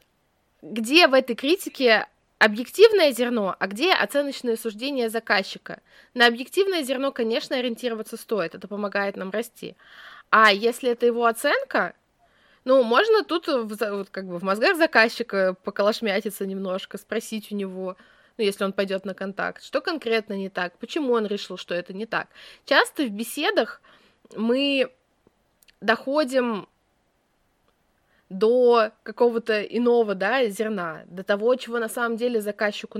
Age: 20-39